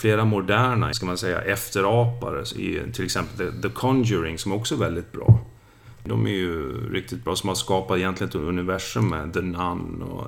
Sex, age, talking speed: male, 40-59, 175 wpm